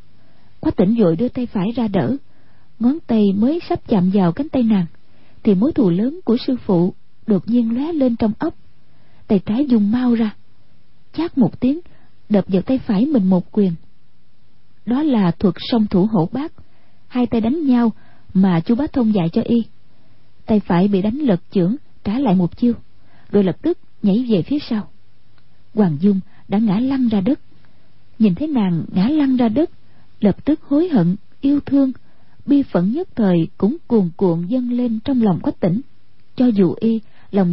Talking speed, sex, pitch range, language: 185 wpm, female, 185-255 Hz, Vietnamese